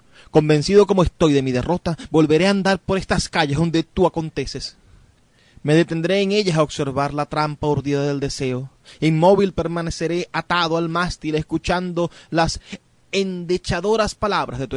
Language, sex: Spanish, male